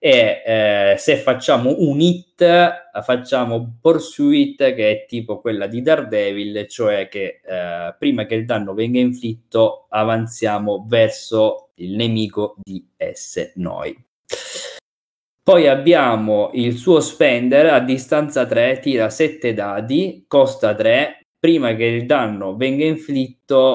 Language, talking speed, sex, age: Italian, 125 wpm, male, 20-39